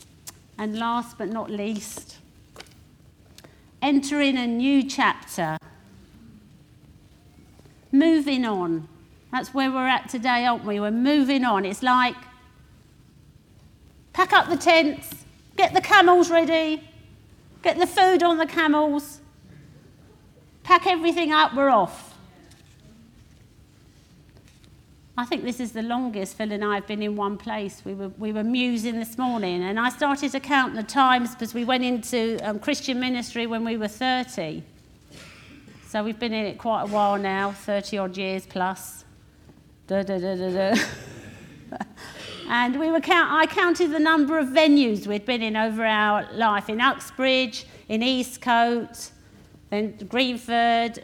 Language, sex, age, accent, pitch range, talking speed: English, female, 50-69, British, 210-280 Hz, 140 wpm